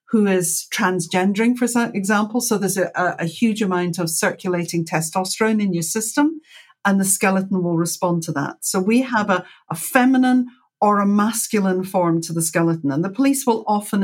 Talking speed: 180 wpm